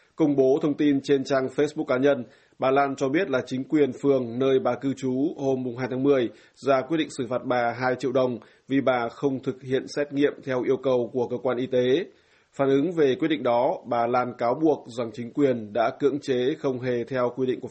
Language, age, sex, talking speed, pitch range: Vietnamese, 20-39, male, 240 wpm, 125-140 Hz